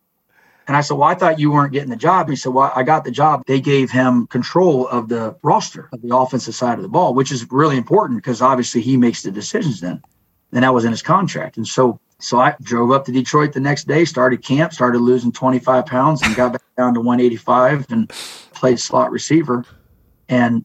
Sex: male